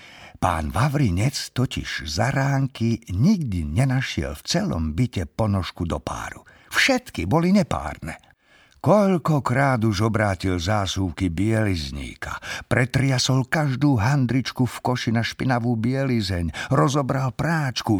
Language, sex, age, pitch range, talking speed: Slovak, male, 50-69, 95-145 Hz, 105 wpm